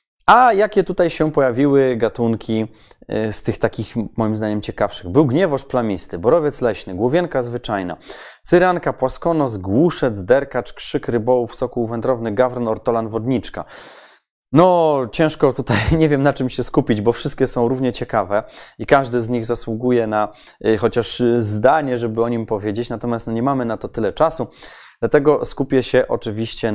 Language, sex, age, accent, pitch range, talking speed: Polish, male, 20-39, native, 105-120 Hz, 155 wpm